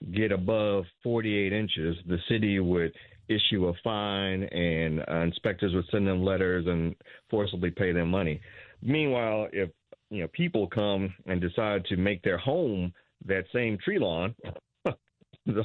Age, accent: 40-59, American